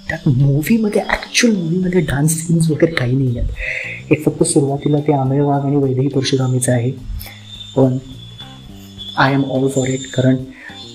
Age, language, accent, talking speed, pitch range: 20-39, Marathi, native, 135 wpm, 130-180 Hz